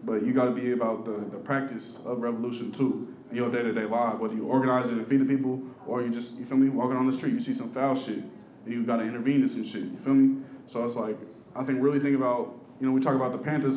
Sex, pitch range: male, 120-140 Hz